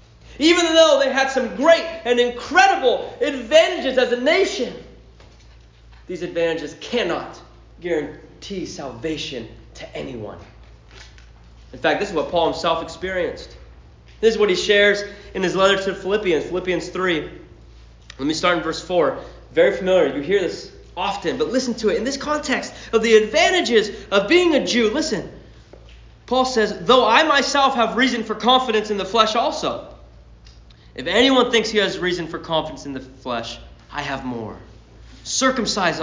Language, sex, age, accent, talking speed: English, male, 30-49, American, 155 wpm